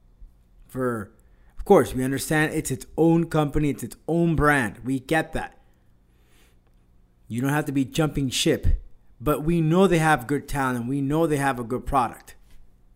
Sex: male